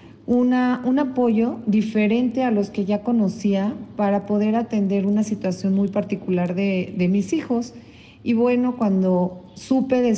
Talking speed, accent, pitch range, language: 145 wpm, Mexican, 195-240 Hz, Spanish